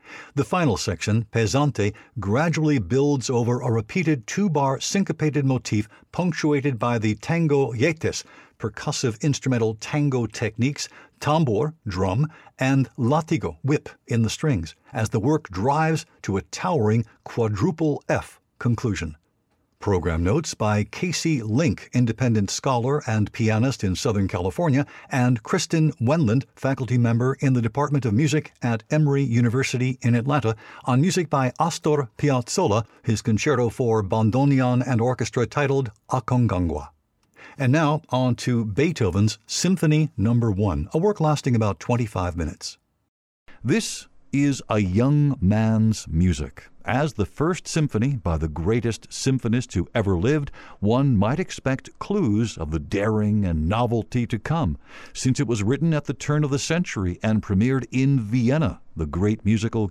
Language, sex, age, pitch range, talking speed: English, male, 60-79, 110-145 Hz, 140 wpm